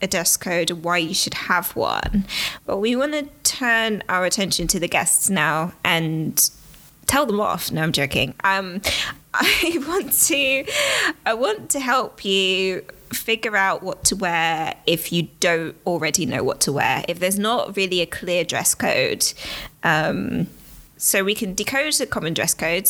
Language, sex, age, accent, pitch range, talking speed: English, female, 20-39, British, 165-215 Hz, 170 wpm